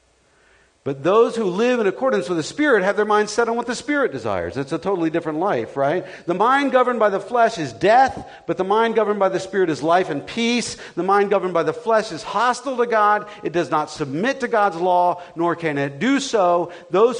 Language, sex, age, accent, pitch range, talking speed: English, male, 50-69, American, 170-255 Hz, 230 wpm